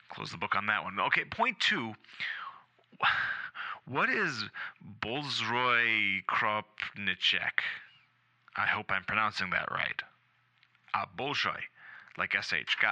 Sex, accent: male, American